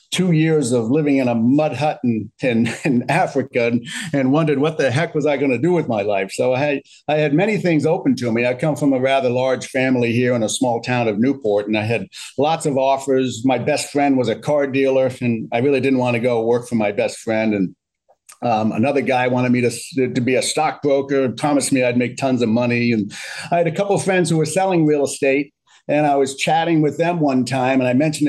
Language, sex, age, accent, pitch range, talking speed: English, male, 50-69, American, 125-155 Hz, 245 wpm